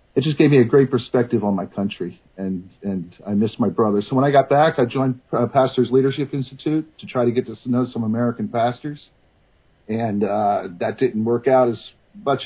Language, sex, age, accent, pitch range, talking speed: English, male, 50-69, American, 115-160 Hz, 205 wpm